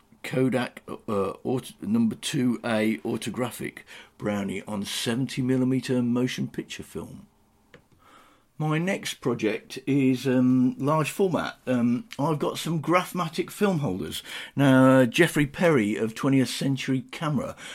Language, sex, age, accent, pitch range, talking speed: English, male, 50-69, British, 110-130 Hz, 120 wpm